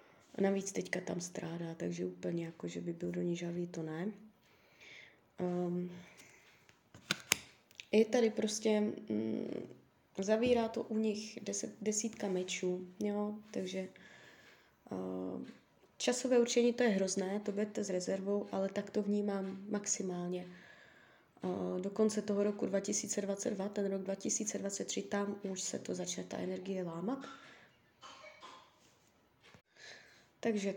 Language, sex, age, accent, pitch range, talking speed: Czech, female, 20-39, native, 180-210 Hz, 120 wpm